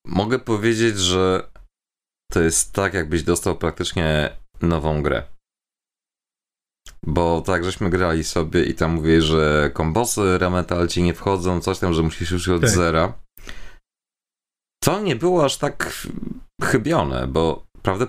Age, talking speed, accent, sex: 30-49, 130 wpm, native, male